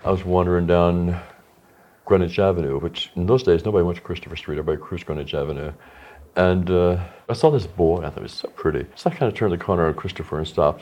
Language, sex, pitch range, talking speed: English, male, 85-115 Hz, 235 wpm